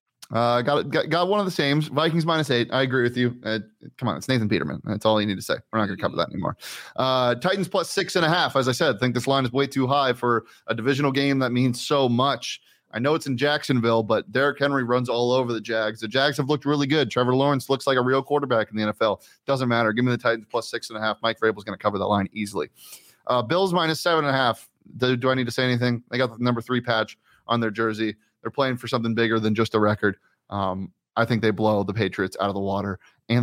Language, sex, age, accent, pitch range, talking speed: English, male, 30-49, American, 115-145 Hz, 275 wpm